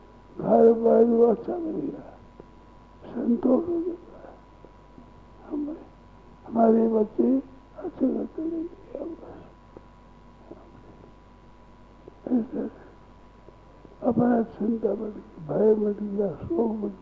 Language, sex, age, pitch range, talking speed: Hindi, male, 60-79, 195-245 Hz, 75 wpm